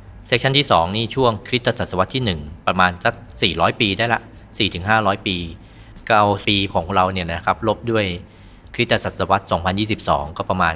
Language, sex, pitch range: Thai, male, 90-115 Hz